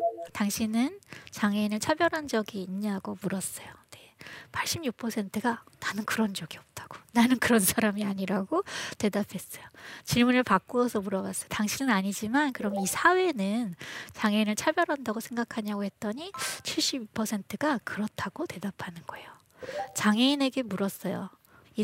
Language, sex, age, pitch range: Korean, female, 20-39, 200-255 Hz